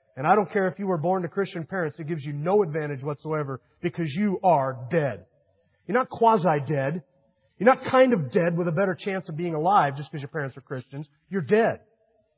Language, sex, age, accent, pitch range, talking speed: English, male, 40-59, American, 165-220 Hz, 215 wpm